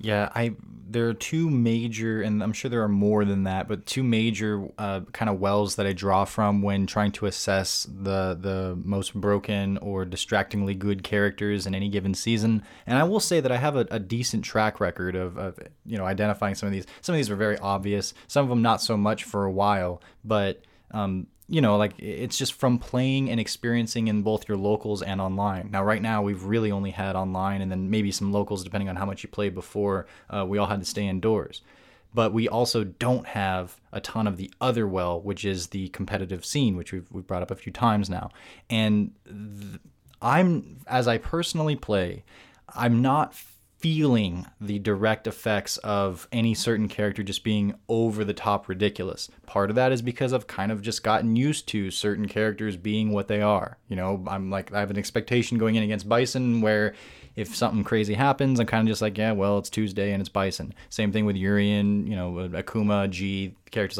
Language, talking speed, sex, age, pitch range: English, 210 wpm, male, 20-39, 100-115 Hz